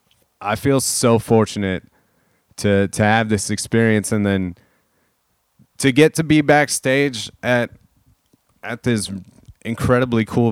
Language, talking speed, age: English, 120 wpm, 30-49